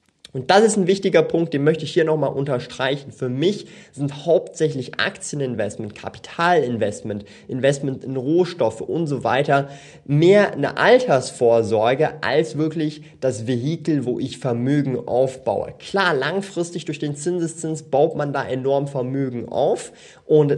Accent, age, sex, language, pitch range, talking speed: German, 30-49, male, German, 125-155 Hz, 135 wpm